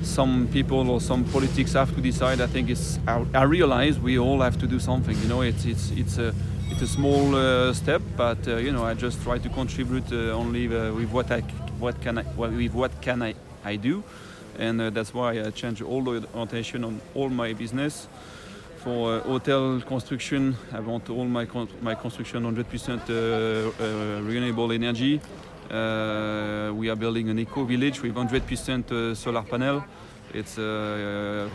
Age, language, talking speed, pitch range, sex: 30-49, German, 185 wpm, 115-125 Hz, male